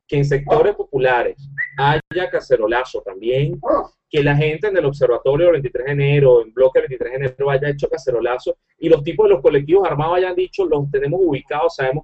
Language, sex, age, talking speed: English, male, 30-49, 195 wpm